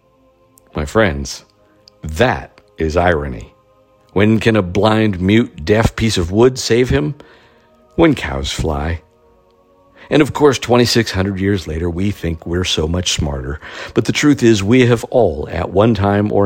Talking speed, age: 155 wpm, 60-79